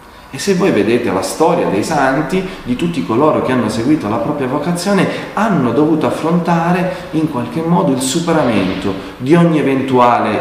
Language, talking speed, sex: Italian, 160 wpm, male